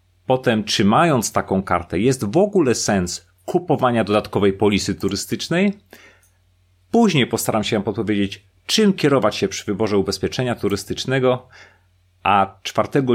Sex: male